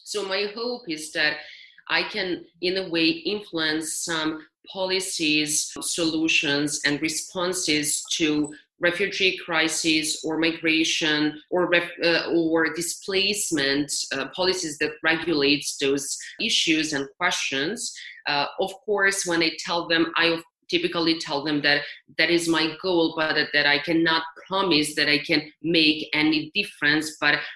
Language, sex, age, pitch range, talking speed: English, female, 30-49, 150-170 Hz, 135 wpm